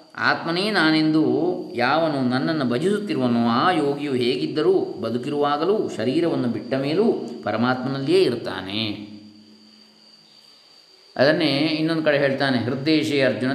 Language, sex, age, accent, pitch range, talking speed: Kannada, male, 20-39, native, 115-140 Hz, 90 wpm